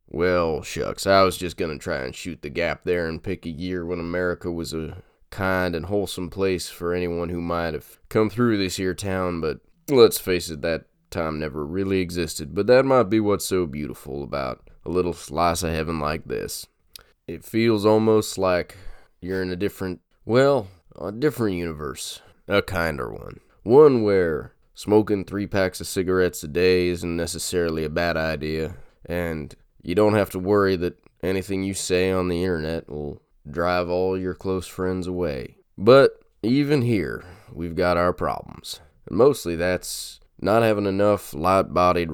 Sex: male